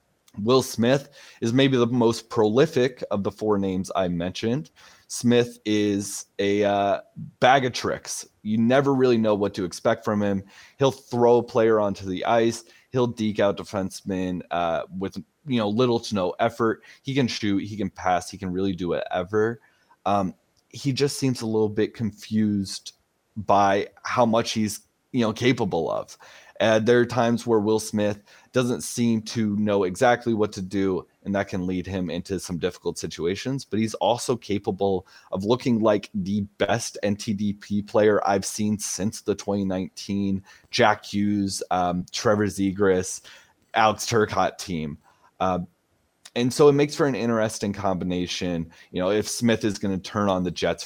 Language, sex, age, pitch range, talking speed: English, male, 20-39, 95-115 Hz, 170 wpm